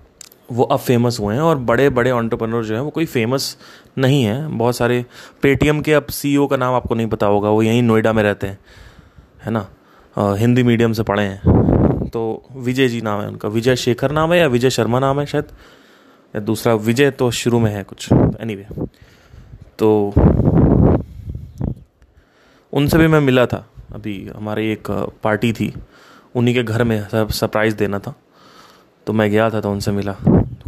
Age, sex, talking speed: 20-39, male, 185 wpm